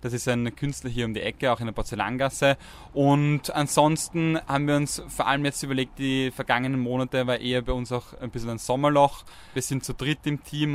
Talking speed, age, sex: 220 wpm, 10-29, male